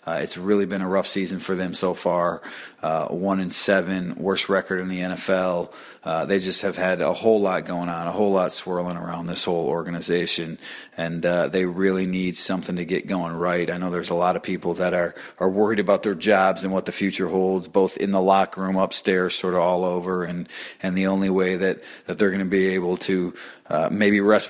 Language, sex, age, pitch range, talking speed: English, male, 30-49, 90-105 Hz, 225 wpm